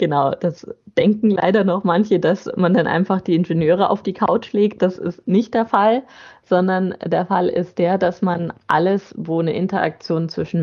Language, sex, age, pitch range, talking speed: German, female, 20-39, 165-205 Hz, 185 wpm